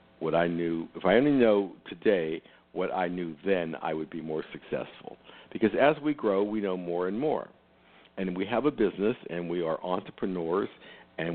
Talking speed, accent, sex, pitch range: 190 wpm, American, male, 80-125 Hz